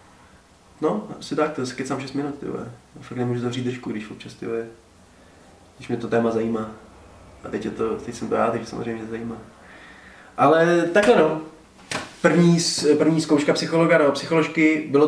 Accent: native